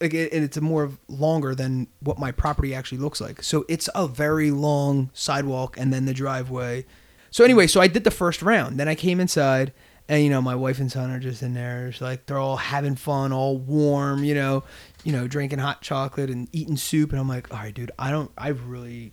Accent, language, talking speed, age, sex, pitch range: American, English, 225 wpm, 20-39, male, 125-150 Hz